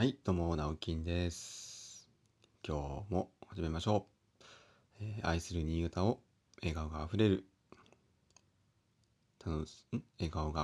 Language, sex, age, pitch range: Japanese, male, 30-49, 85-115 Hz